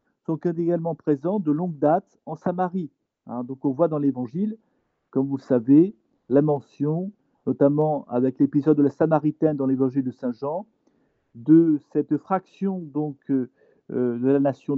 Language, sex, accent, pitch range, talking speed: French, male, French, 140-185 Hz, 160 wpm